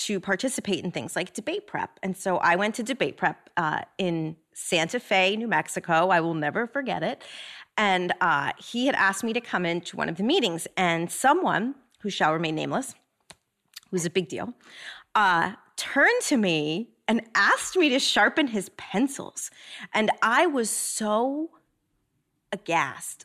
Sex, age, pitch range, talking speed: female, 30-49, 180-250 Hz, 165 wpm